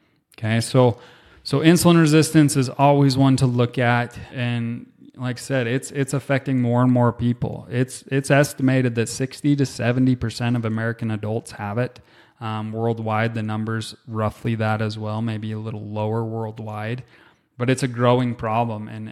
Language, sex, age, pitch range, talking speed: English, male, 20-39, 110-130 Hz, 165 wpm